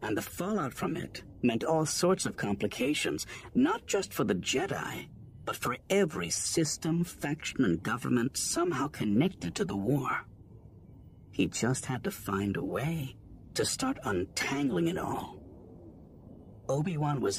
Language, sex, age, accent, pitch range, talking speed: English, male, 50-69, American, 100-150 Hz, 140 wpm